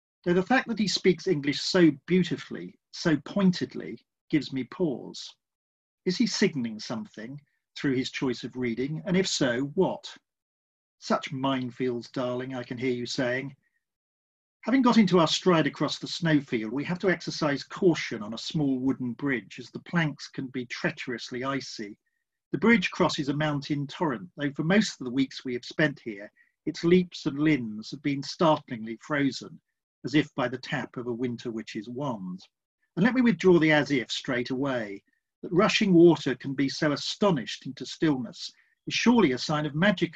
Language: English